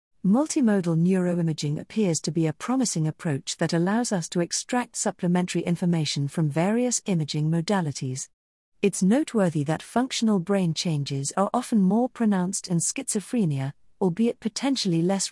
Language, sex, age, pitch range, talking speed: English, female, 40-59, 160-210 Hz, 135 wpm